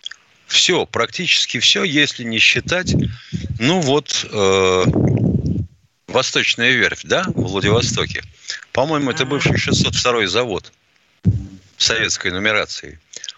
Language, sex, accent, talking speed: Russian, male, native, 95 wpm